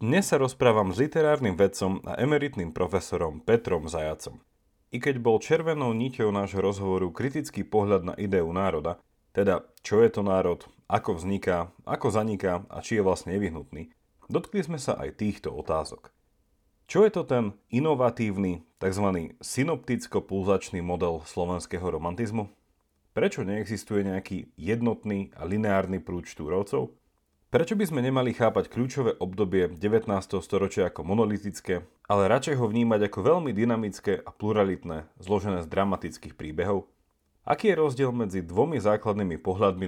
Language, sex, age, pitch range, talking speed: Slovak, male, 30-49, 90-115 Hz, 140 wpm